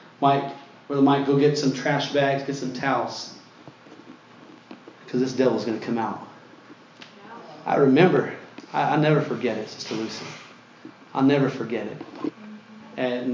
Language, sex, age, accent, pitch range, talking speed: English, male, 30-49, American, 140-160 Hz, 145 wpm